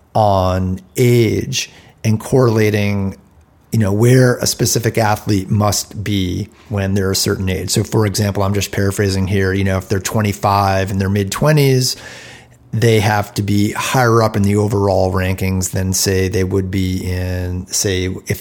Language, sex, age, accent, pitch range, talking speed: English, male, 40-59, American, 100-115 Hz, 165 wpm